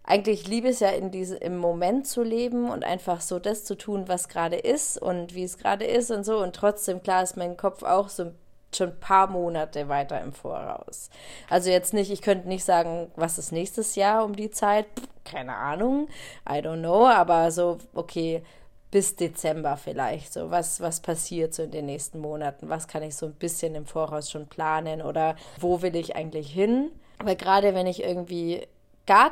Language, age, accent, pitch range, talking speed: German, 20-39, German, 170-200 Hz, 200 wpm